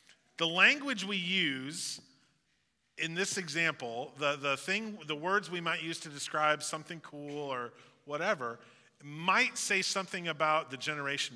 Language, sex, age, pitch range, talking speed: English, male, 40-59, 130-180 Hz, 130 wpm